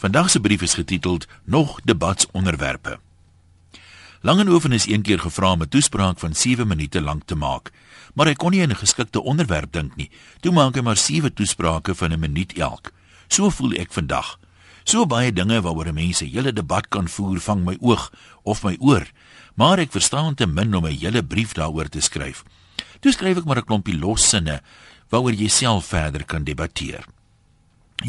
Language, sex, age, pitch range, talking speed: Dutch, male, 60-79, 85-130 Hz, 185 wpm